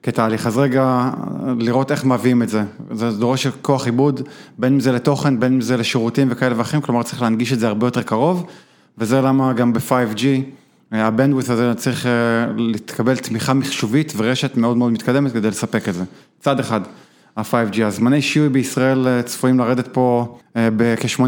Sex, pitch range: male, 115-135 Hz